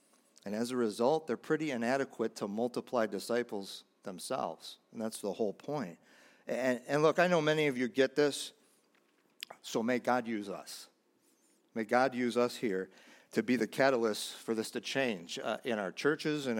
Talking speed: 175 wpm